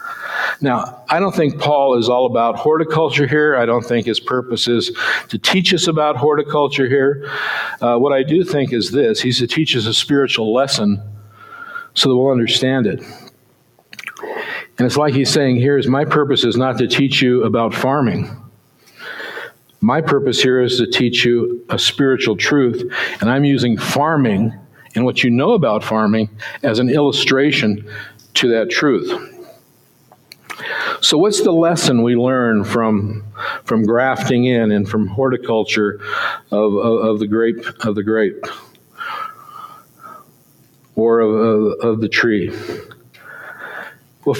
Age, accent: 50-69, American